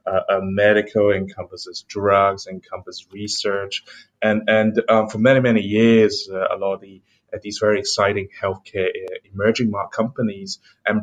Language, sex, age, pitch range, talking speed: English, male, 20-39, 95-120 Hz, 150 wpm